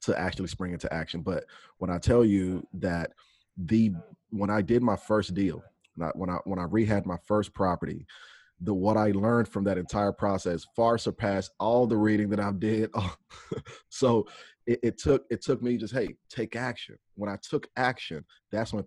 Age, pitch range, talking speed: 30-49, 90-110 Hz, 195 wpm